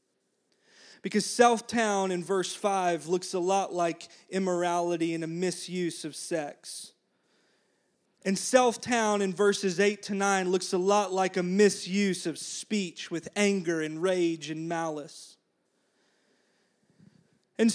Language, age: English, 30-49